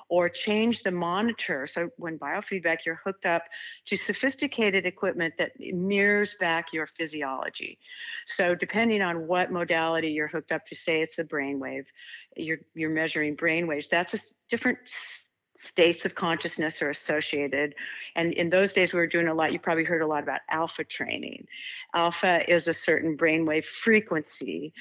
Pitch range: 160-195 Hz